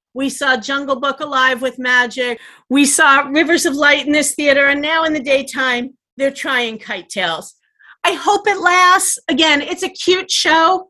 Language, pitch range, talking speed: English, 250-315 Hz, 180 wpm